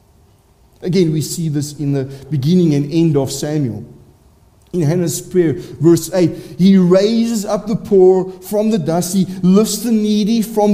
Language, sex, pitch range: English, male, 140-205 Hz